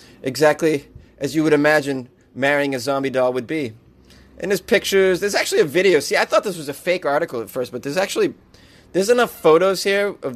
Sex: male